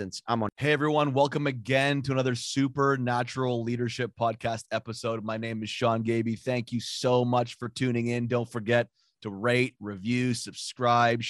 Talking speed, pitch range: 150 wpm, 115-130 Hz